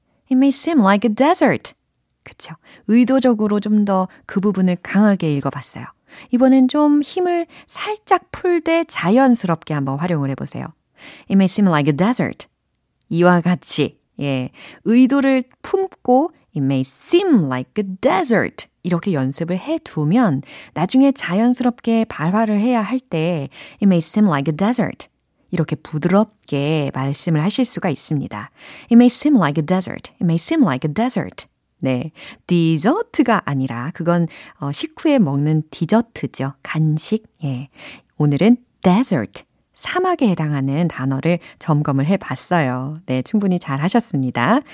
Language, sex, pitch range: Korean, female, 155-250 Hz